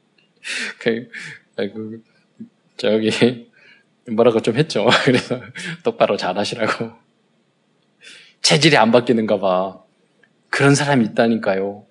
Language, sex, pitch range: Korean, male, 110-170 Hz